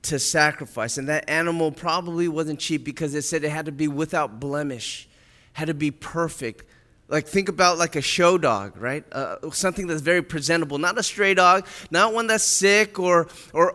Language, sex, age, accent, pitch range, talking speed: English, male, 20-39, American, 150-190 Hz, 195 wpm